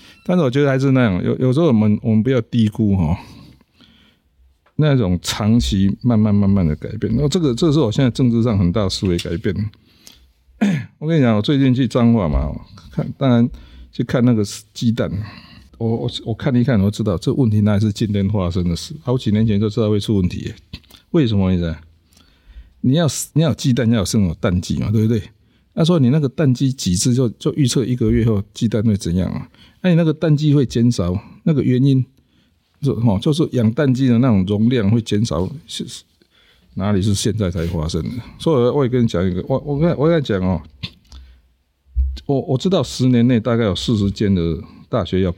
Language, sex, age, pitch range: Chinese, male, 50-69, 95-130 Hz